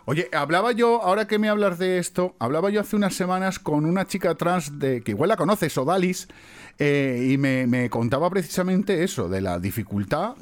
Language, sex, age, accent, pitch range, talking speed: Spanish, male, 40-59, Spanish, 145-215 Hz, 195 wpm